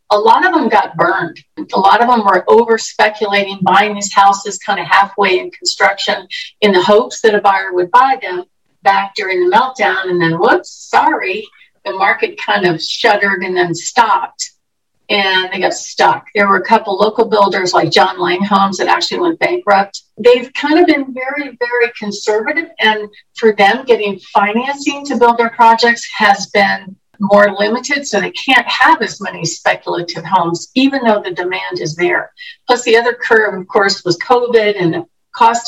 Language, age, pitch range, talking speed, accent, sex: English, 50-69, 190-250 Hz, 180 wpm, American, female